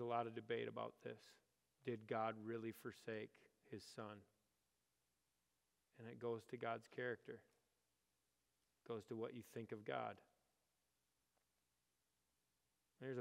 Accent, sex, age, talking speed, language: American, male, 30-49, 120 wpm, English